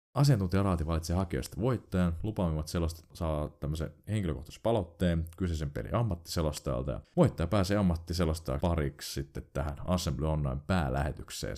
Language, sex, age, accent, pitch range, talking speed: Finnish, male, 30-49, native, 75-95 Hz, 110 wpm